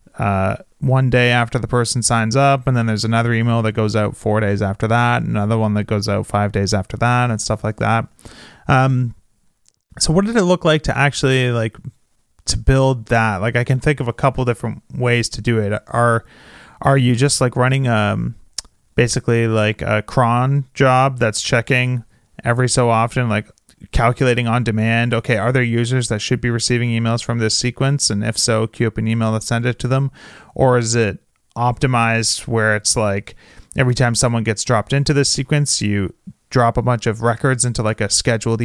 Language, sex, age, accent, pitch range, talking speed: English, male, 30-49, American, 110-130 Hz, 200 wpm